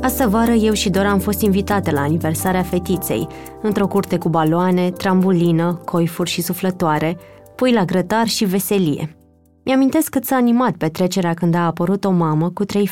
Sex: female